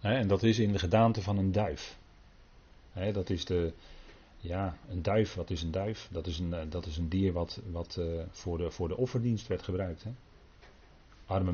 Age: 40-59